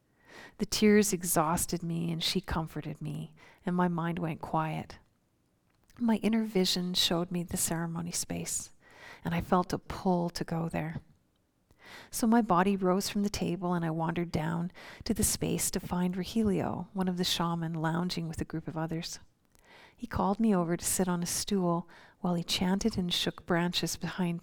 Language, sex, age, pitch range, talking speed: English, female, 40-59, 165-190 Hz, 175 wpm